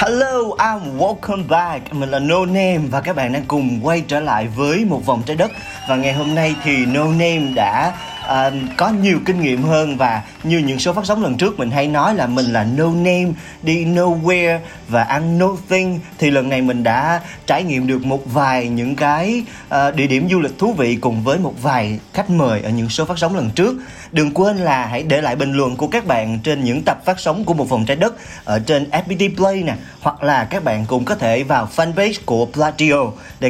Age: 30-49